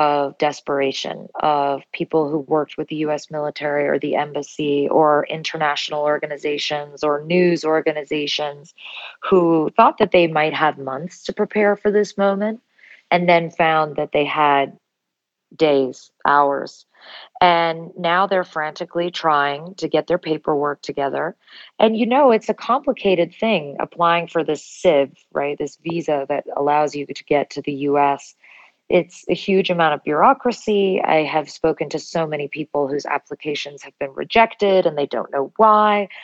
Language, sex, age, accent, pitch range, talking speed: English, female, 30-49, American, 150-185 Hz, 155 wpm